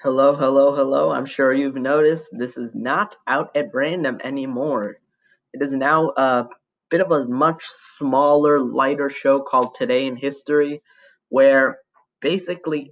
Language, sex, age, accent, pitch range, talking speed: English, male, 10-29, American, 135-160 Hz, 145 wpm